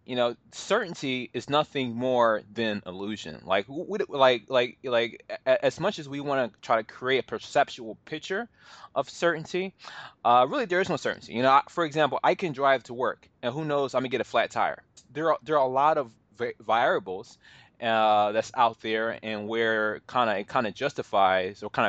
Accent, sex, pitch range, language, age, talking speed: American, male, 110-145 Hz, English, 20-39, 205 wpm